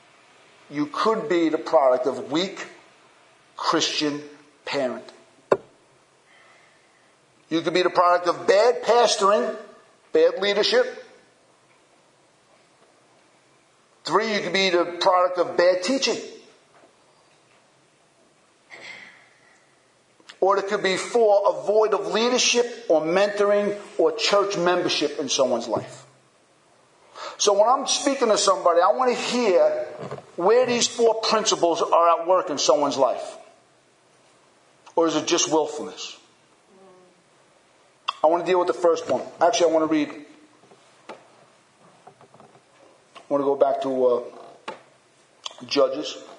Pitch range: 160-220 Hz